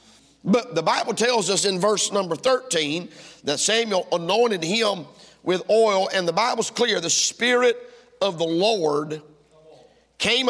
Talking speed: 145 wpm